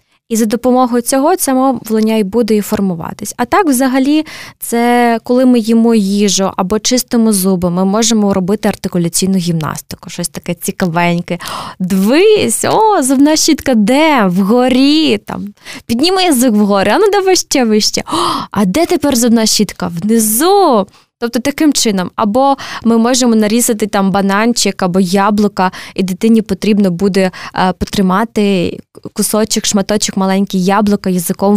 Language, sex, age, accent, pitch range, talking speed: Ukrainian, female, 20-39, native, 195-240 Hz, 135 wpm